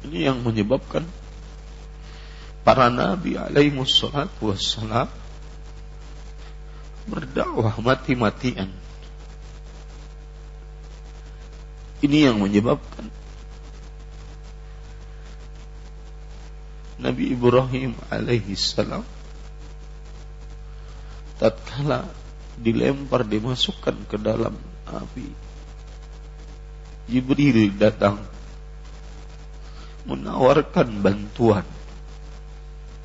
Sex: male